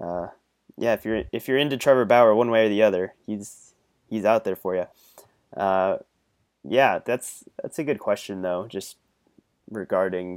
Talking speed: 175 wpm